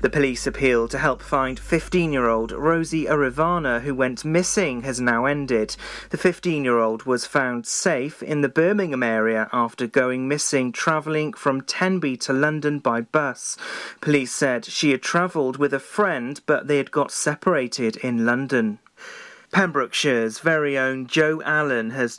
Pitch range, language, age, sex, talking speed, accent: 125-165 Hz, English, 30-49, male, 160 wpm, British